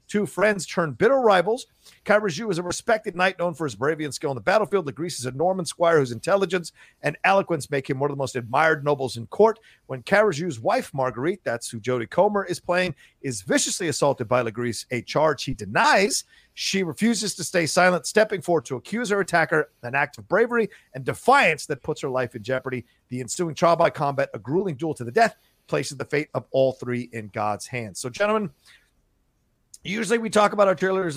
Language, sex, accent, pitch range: English, male, American, 135-180 Hz